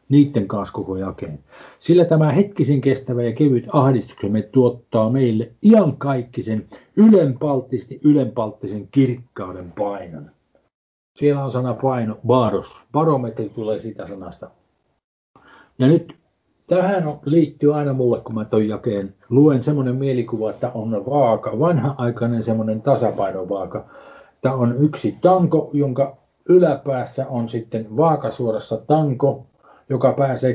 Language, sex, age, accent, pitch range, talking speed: Finnish, male, 50-69, native, 115-150 Hz, 115 wpm